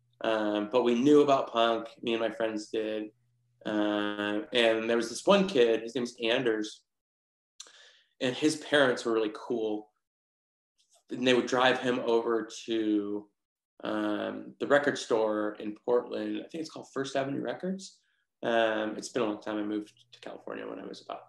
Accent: American